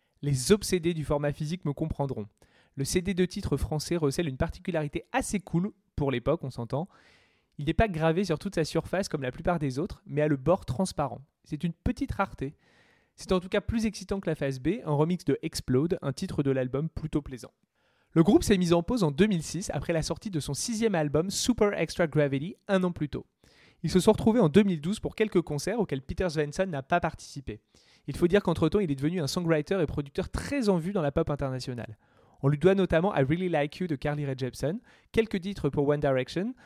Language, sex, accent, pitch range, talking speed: French, male, French, 145-185 Hz, 220 wpm